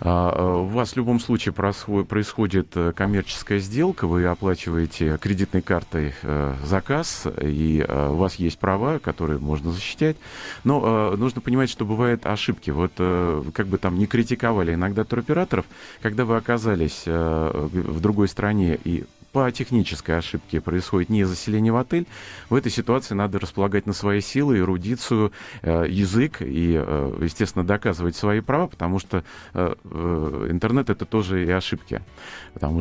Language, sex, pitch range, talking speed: Russian, male, 85-110 Hz, 135 wpm